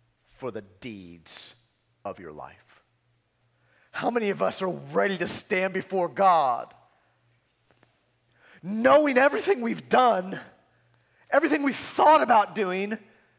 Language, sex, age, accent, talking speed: English, male, 40-59, American, 110 wpm